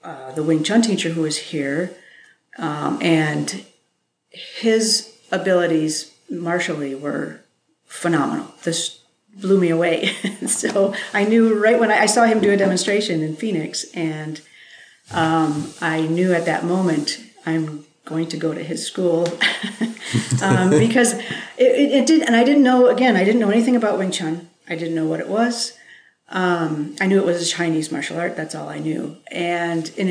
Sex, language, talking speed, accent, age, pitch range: female, English, 170 wpm, American, 40-59, 160-210 Hz